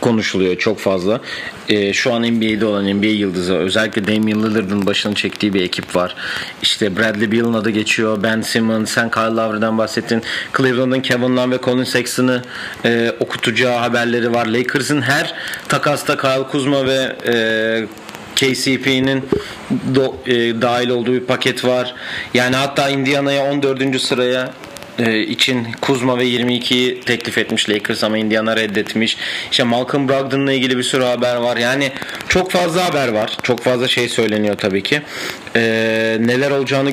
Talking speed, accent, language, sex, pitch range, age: 140 wpm, native, Turkish, male, 105-130 Hz, 40-59